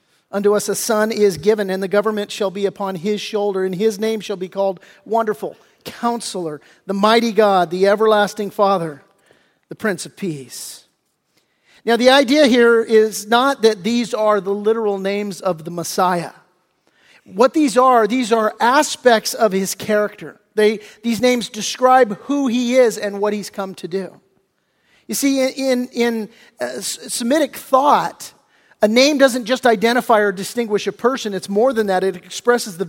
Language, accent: English, American